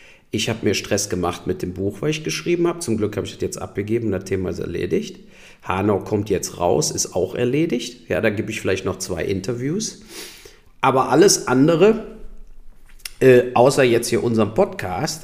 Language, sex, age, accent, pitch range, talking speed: German, male, 50-69, German, 115-145 Hz, 185 wpm